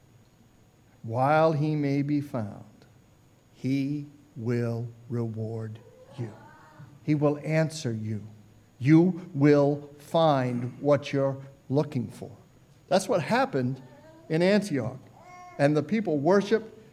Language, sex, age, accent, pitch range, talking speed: English, male, 60-79, American, 145-195 Hz, 105 wpm